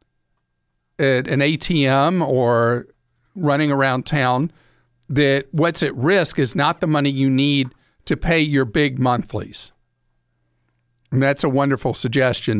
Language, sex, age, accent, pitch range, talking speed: English, male, 50-69, American, 125-165 Hz, 130 wpm